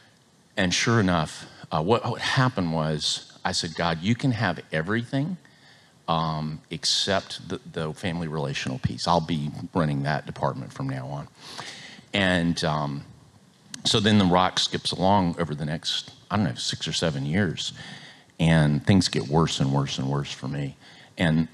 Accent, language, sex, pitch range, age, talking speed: American, English, male, 75-100 Hz, 50-69, 165 wpm